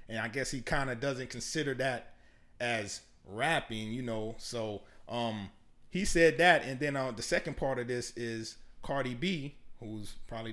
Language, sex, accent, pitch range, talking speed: English, male, American, 120-155 Hz, 175 wpm